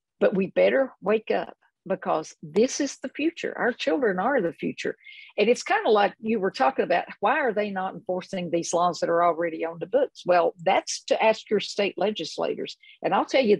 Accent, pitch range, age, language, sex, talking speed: American, 180-270 Hz, 50-69, English, female, 210 wpm